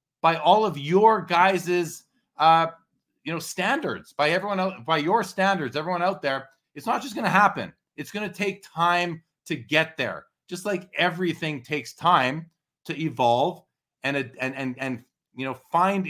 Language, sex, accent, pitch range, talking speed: English, male, American, 125-175 Hz, 170 wpm